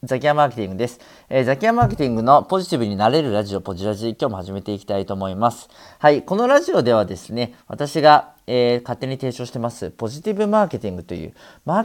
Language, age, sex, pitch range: Japanese, 40-59, male, 100-155 Hz